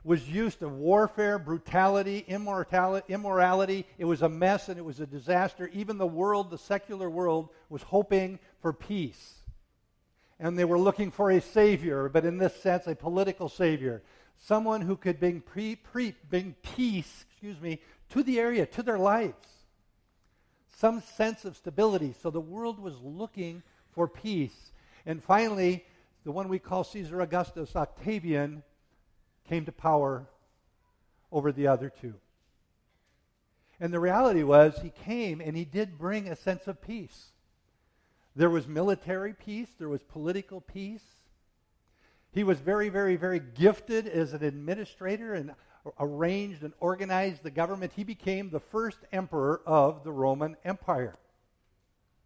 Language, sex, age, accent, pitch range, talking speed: English, male, 50-69, American, 155-195 Hz, 145 wpm